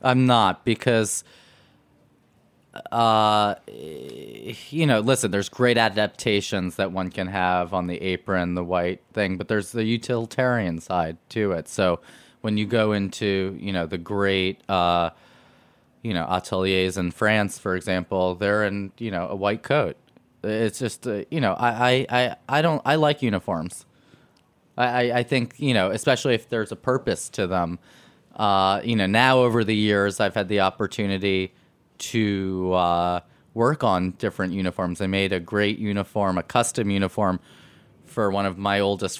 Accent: American